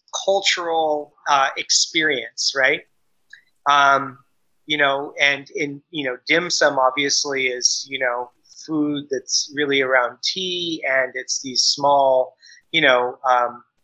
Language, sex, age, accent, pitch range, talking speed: English, male, 30-49, American, 130-170 Hz, 125 wpm